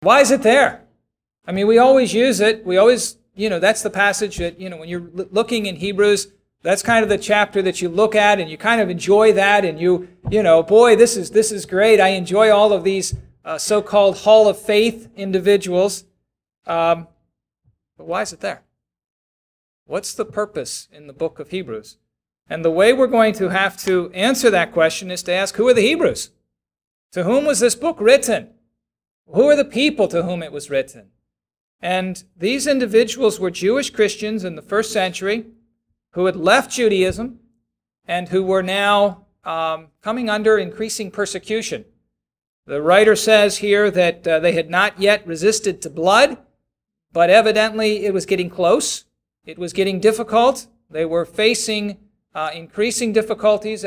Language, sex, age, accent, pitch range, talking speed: English, male, 50-69, American, 180-220 Hz, 180 wpm